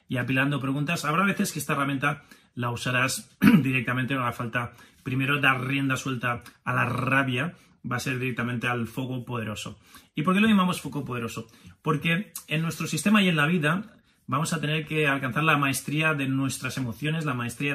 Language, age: Spanish, 30-49